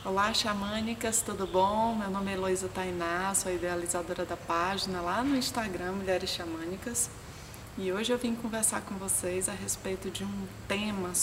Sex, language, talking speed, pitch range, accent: female, Portuguese, 165 wpm, 180-225 Hz, Brazilian